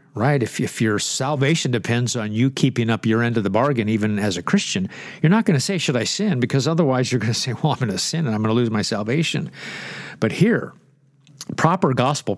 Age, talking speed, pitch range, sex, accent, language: 50-69, 240 wpm, 125-160 Hz, male, American, English